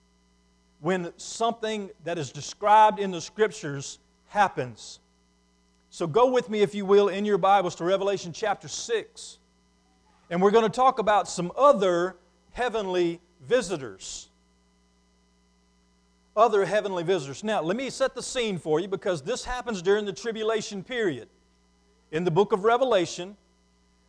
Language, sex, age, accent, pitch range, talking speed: English, male, 40-59, American, 155-220 Hz, 140 wpm